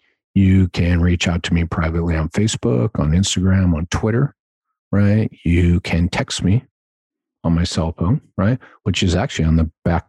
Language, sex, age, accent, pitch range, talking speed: English, male, 50-69, American, 85-95 Hz, 170 wpm